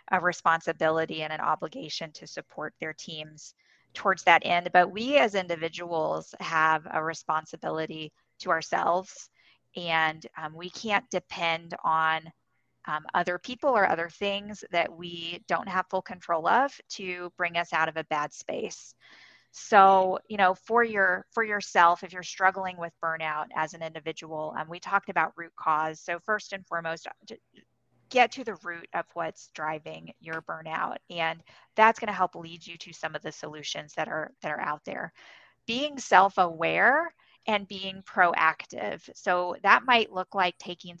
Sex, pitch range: female, 160-195 Hz